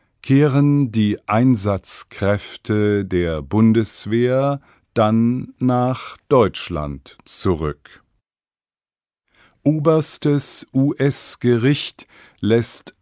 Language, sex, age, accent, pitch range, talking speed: English, male, 50-69, German, 95-125 Hz, 55 wpm